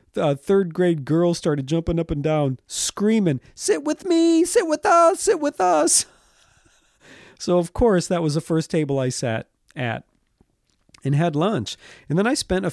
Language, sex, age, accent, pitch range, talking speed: English, male, 40-59, American, 130-175 Hz, 180 wpm